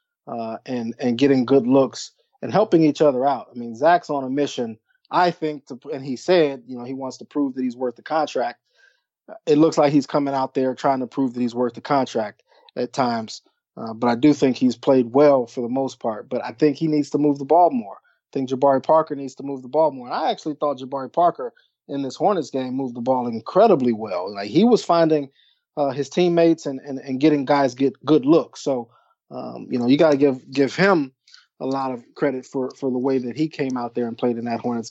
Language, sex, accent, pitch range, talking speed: English, male, American, 125-155 Hz, 240 wpm